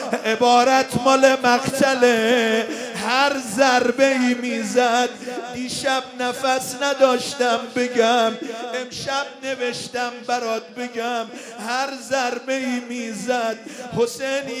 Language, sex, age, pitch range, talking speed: Persian, male, 50-69, 245-290 Hz, 95 wpm